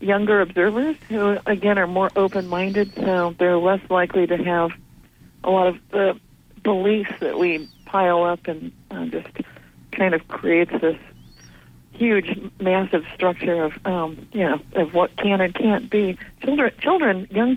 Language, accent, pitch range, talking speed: English, American, 160-200 Hz, 155 wpm